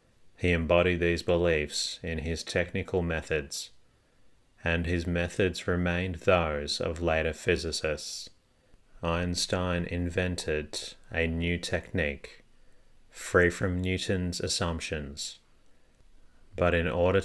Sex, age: male, 30-49